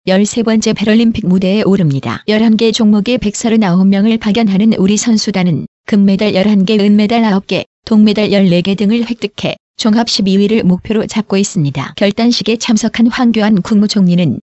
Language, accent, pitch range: Korean, native, 195-225 Hz